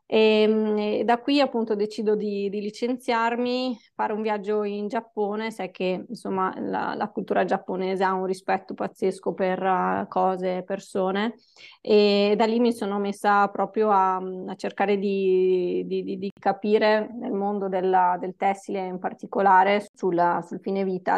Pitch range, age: 190-210 Hz, 20-39